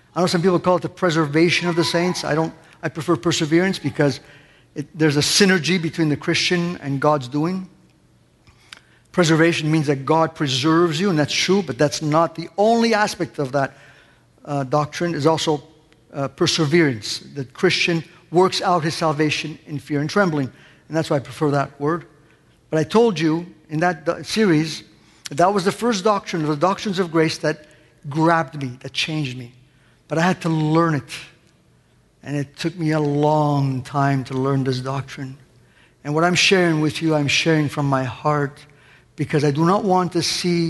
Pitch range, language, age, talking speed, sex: 145-170 Hz, English, 50-69, 185 wpm, male